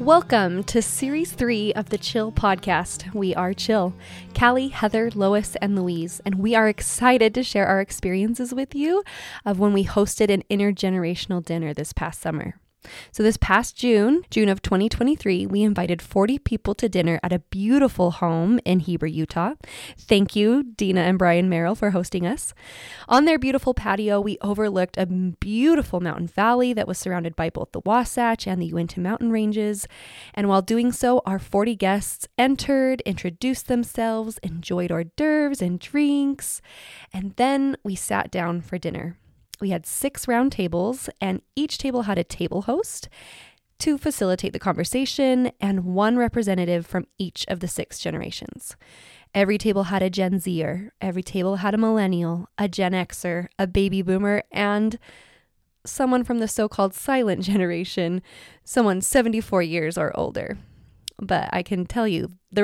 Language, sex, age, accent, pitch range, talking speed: English, female, 20-39, American, 180-235 Hz, 160 wpm